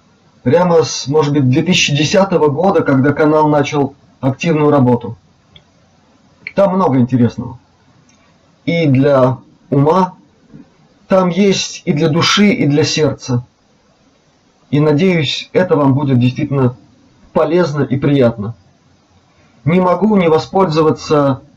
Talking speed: 105 wpm